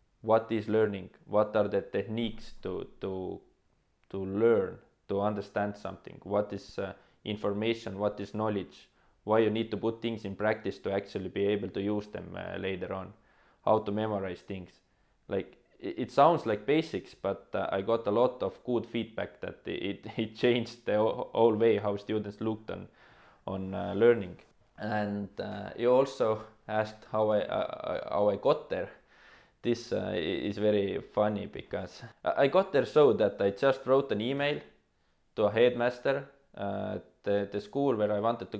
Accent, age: Finnish, 20-39